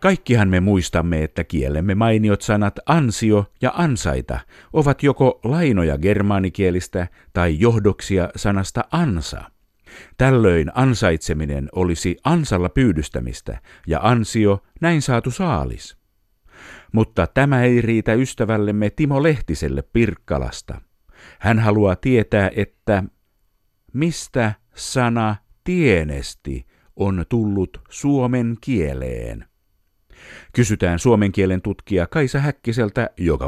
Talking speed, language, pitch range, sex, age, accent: 95 wpm, Finnish, 80-115 Hz, male, 50-69, native